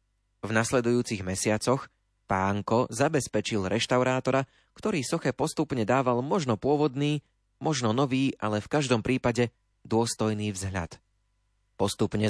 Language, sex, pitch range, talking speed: Slovak, male, 105-130 Hz, 100 wpm